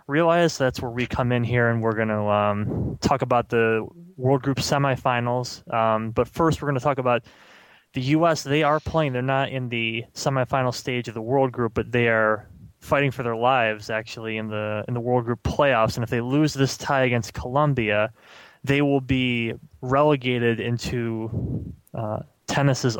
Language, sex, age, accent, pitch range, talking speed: English, male, 20-39, American, 115-135 Hz, 185 wpm